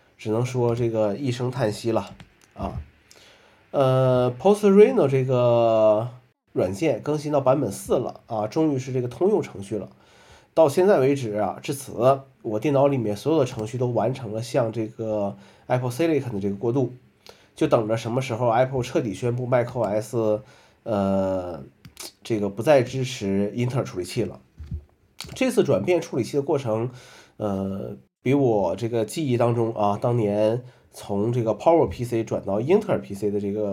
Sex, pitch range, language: male, 105-140 Hz, Chinese